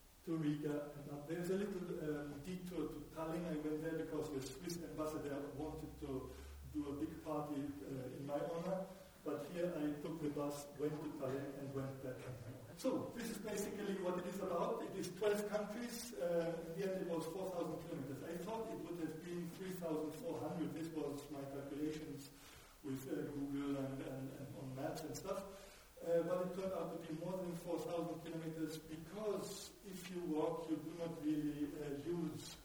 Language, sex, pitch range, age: Italian, male, 145-175 Hz, 50-69